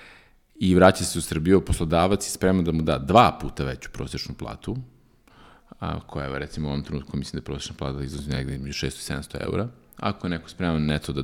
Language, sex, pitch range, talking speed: English, male, 75-95 Hz, 210 wpm